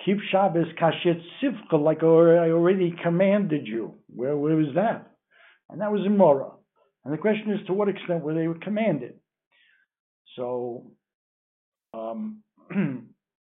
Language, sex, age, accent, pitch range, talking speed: English, male, 60-79, American, 125-170 Hz, 130 wpm